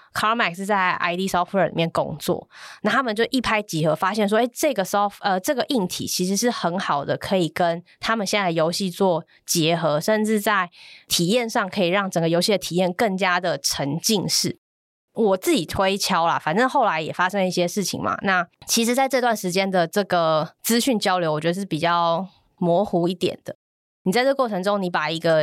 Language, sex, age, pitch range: Chinese, female, 20-39, 165-205 Hz